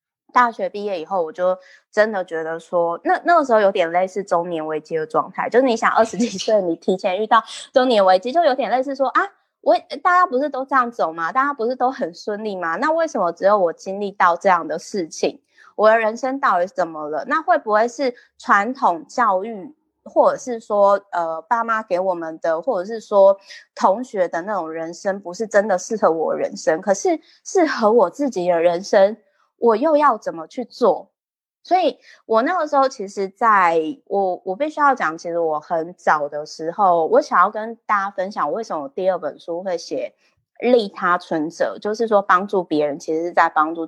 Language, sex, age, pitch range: Chinese, female, 20-39, 175-260 Hz